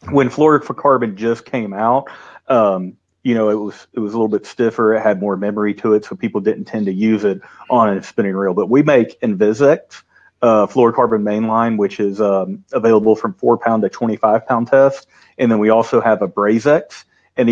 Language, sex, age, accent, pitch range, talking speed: English, male, 30-49, American, 100-120 Hz, 190 wpm